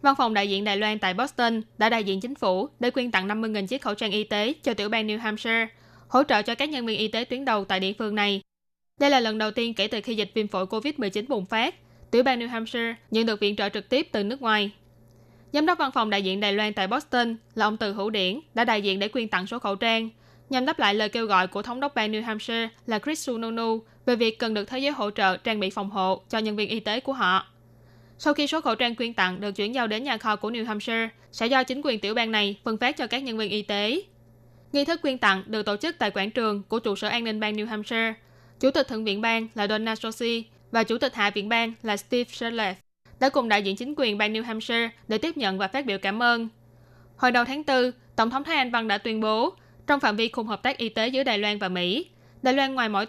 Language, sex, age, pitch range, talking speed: Vietnamese, female, 10-29, 205-245 Hz, 270 wpm